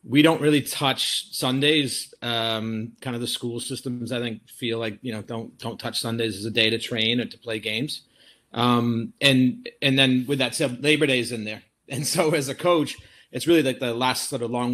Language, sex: English, male